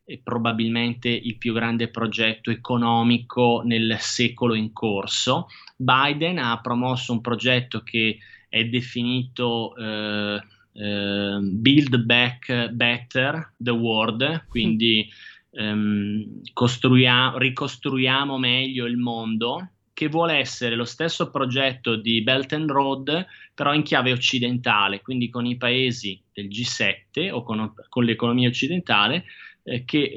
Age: 20-39